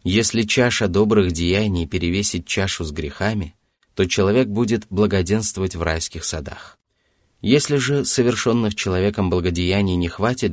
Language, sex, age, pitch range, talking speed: Russian, male, 20-39, 85-105 Hz, 125 wpm